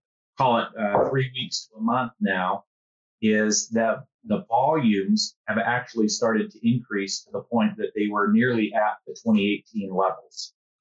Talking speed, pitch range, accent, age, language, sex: 160 wpm, 105-130 Hz, American, 30-49, English, male